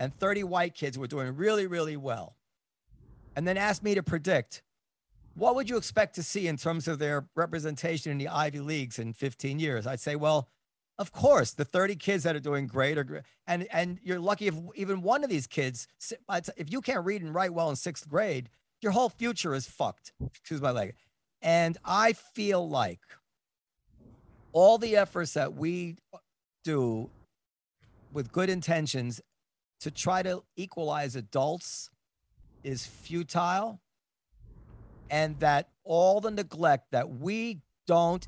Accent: American